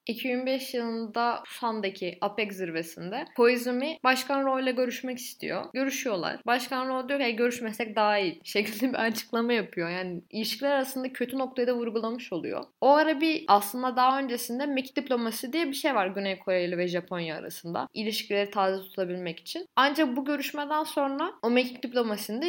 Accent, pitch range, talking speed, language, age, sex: native, 205-260 Hz, 155 wpm, Turkish, 10-29, female